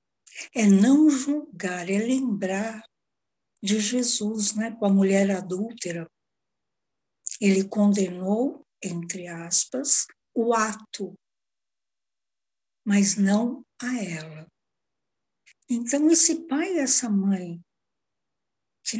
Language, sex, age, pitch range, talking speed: Portuguese, female, 60-79, 195-250 Hz, 90 wpm